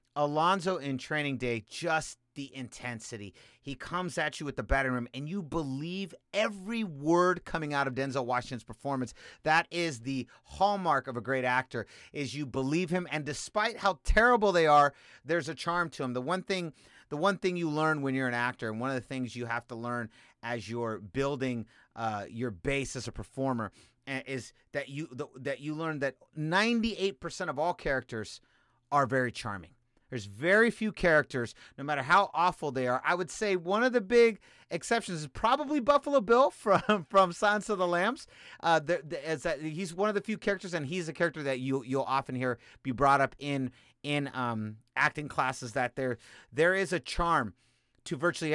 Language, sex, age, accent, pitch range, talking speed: English, male, 30-49, American, 125-175 Hz, 195 wpm